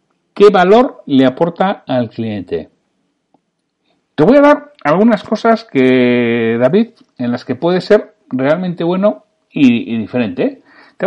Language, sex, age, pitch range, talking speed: Spanish, male, 60-79, 115-190 Hz, 135 wpm